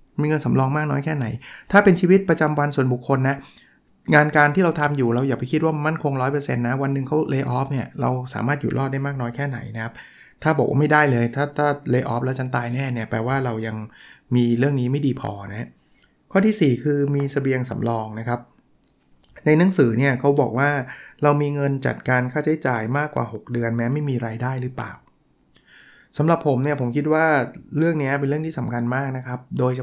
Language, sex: Thai, male